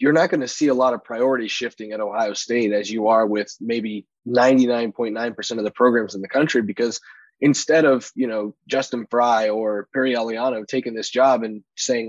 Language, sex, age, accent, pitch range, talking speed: English, male, 20-39, American, 115-150 Hz, 200 wpm